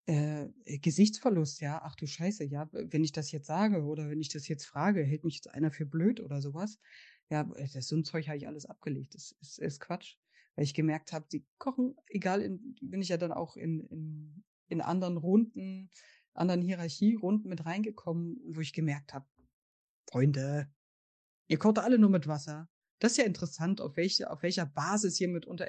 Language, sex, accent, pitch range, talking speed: German, female, German, 150-190 Hz, 195 wpm